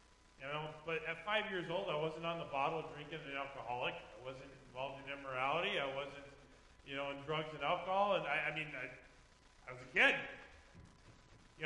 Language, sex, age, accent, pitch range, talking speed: English, male, 30-49, American, 135-195 Hz, 195 wpm